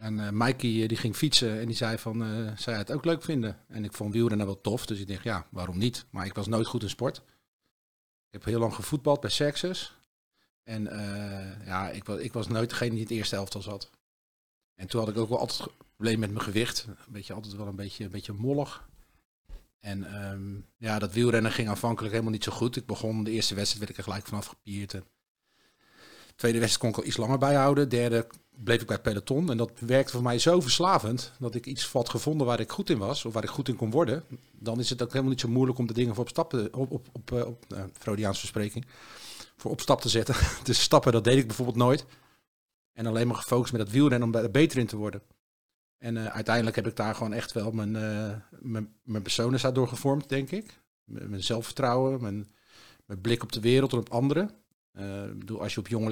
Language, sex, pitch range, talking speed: Dutch, male, 105-125 Hz, 235 wpm